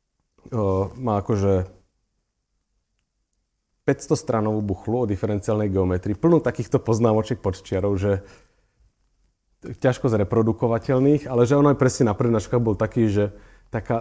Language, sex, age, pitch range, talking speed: Slovak, male, 30-49, 100-125 Hz, 110 wpm